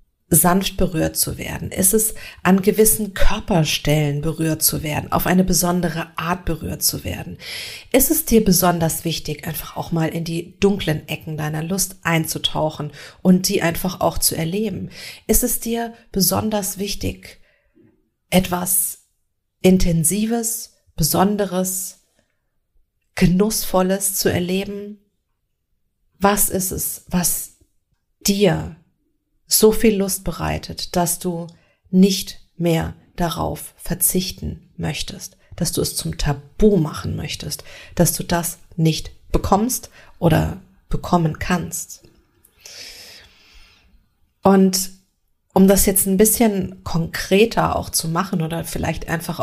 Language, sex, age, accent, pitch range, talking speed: German, female, 40-59, German, 165-200 Hz, 115 wpm